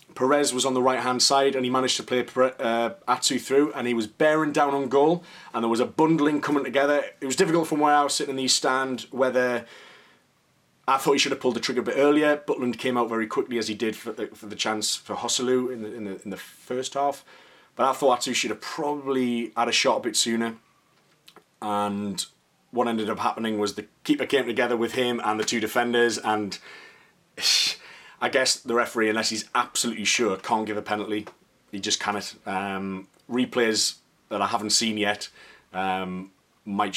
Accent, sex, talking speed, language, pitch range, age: British, male, 205 wpm, English, 110-140 Hz, 30-49